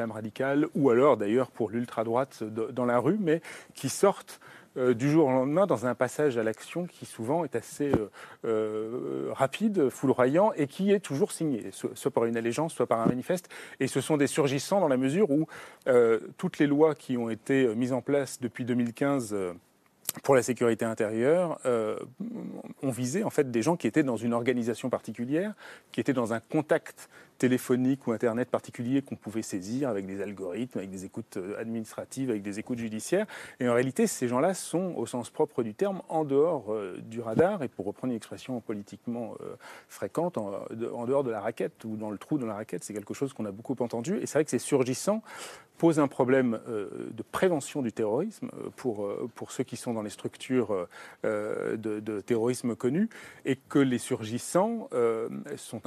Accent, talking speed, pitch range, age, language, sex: French, 190 wpm, 115-150 Hz, 30-49, French, male